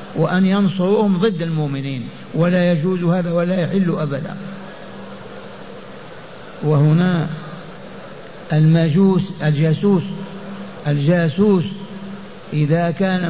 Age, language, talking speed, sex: 60-79, Arabic, 70 wpm, male